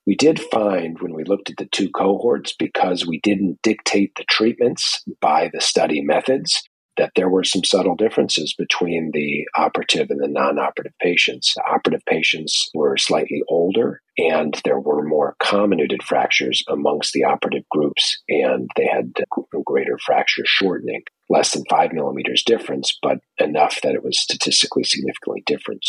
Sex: male